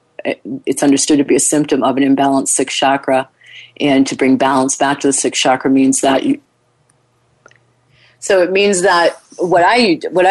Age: 40-59